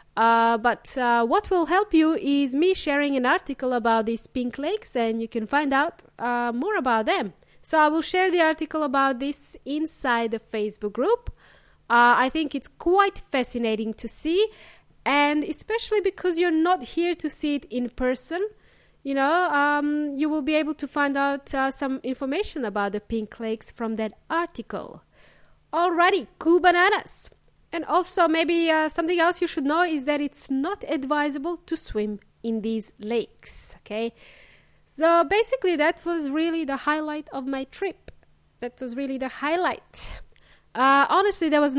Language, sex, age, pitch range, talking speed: English, female, 20-39, 250-335 Hz, 170 wpm